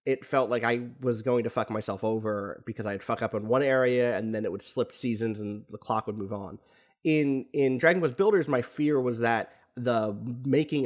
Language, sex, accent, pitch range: English, male, American, 110-135 Hz